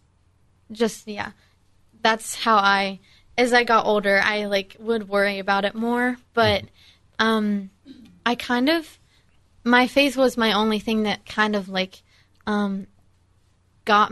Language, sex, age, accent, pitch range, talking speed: English, female, 20-39, American, 200-225 Hz, 140 wpm